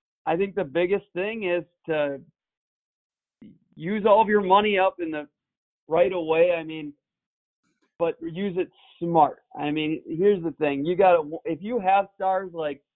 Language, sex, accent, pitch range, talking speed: English, male, American, 145-175 Hz, 165 wpm